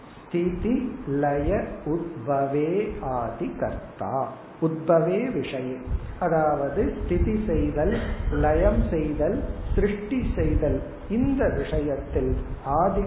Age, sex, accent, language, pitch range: 50-69, male, native, Tamil, 140-195 Hz